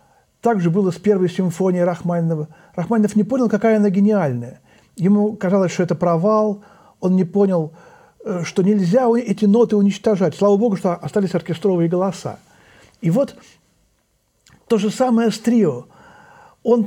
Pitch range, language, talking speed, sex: 165-210 Hz, Russian, 140 wpm, male